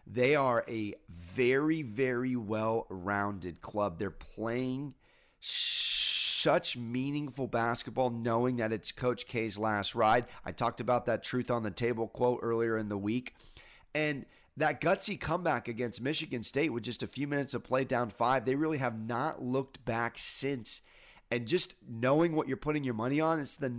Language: English